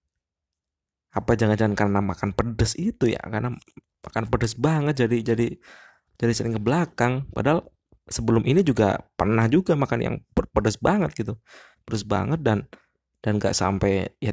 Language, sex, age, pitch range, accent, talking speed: Indonesian, male, 20-39, 90-120 Hz, native, 145 wpm